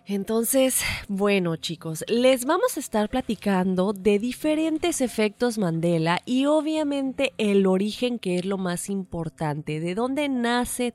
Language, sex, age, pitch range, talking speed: Spanish, female, 30-49, 185-245 Hz, 130 wpm